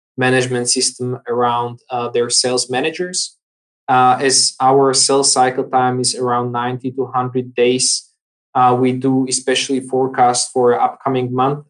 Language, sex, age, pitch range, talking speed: English, male, 20-39, 125-135 Hz, 140 wpm